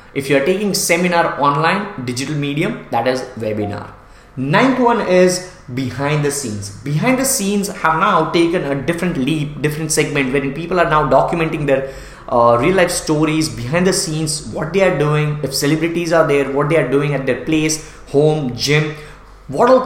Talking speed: 180 wpm